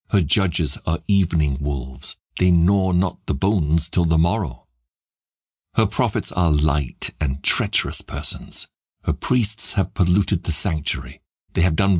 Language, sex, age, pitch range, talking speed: English, male, 60-79, 75-95 Hz, 145 wpm